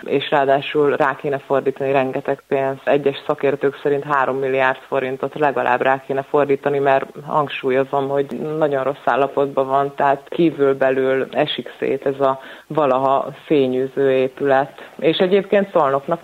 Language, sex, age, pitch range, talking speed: Hungarian, female, 30-49, 135-150 Hz, 135 wpm